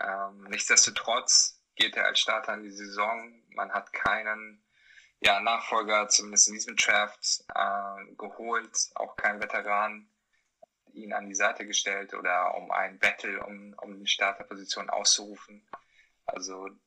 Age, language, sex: 10-29, German, male